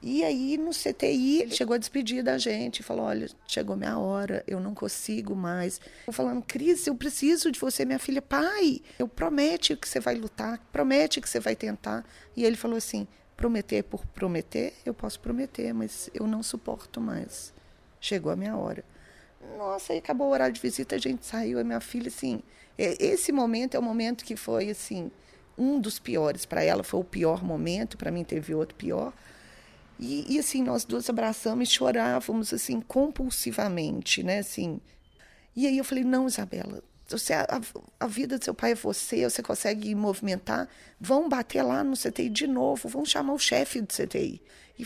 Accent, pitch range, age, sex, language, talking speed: Brazilian, 185-270 Hz, 40-59, female, Portuguese, 185 wpm